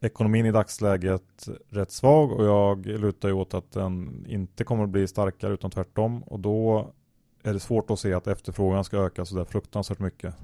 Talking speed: 195 wpm